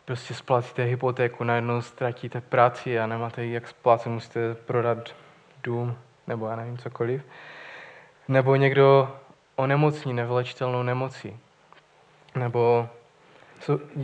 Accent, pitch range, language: native, 125-145 Hz, Czech